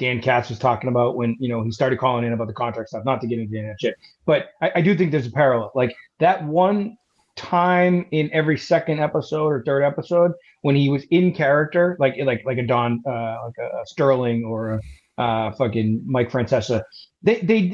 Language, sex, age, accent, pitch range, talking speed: English, male, 30-49, American, 130-180 Hz, 215 wpm